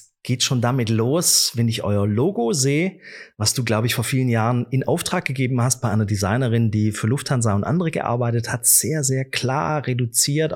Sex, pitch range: male, 120-180 Hz